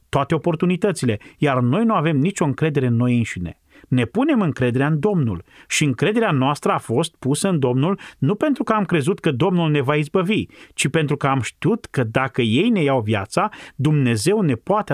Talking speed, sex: 195 wpm, male